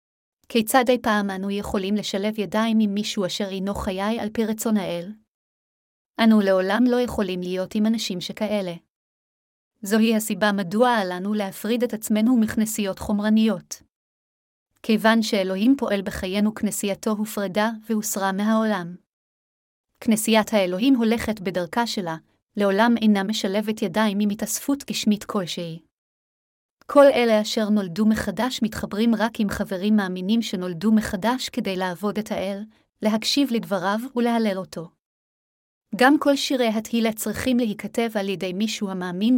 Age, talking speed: 30-49, 130 wpm